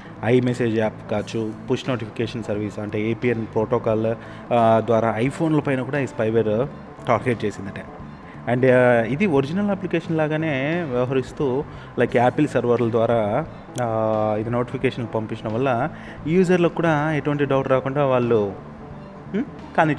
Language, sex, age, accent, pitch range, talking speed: Telugu, male, 30-49, native, 110-135 Hz, 115 wpm